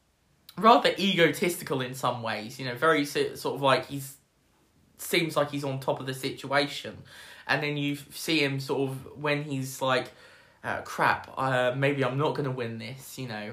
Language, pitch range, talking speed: English, 135-160 Hz, 180 wpm